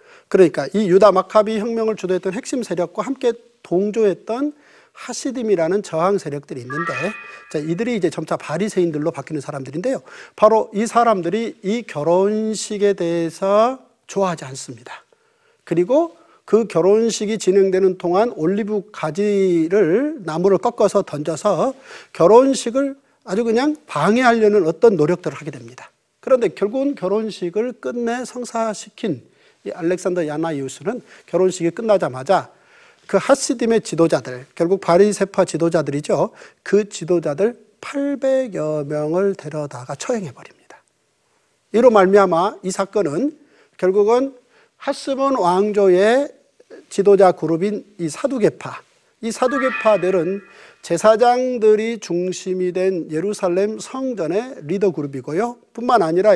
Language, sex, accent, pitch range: Korean, male, native, 175-235 Hz